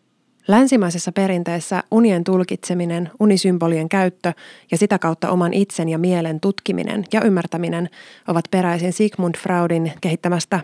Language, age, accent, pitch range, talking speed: Finnish, 20-39, native, 170-205 Hz, 120 wpm